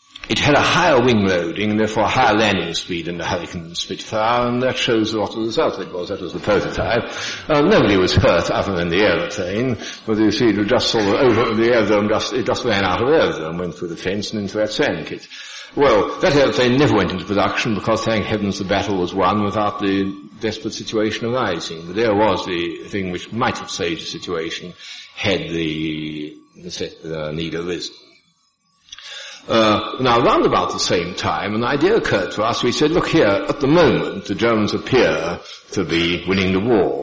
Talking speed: 200 wpm